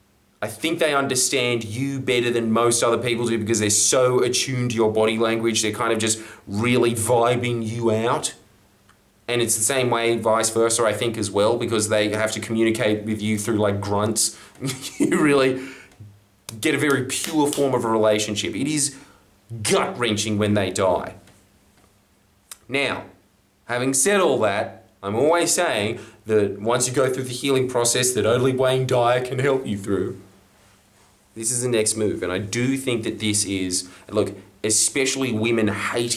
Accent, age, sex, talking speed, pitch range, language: Australian, 20-39, male, 175 wpm, 105-130 Hz, English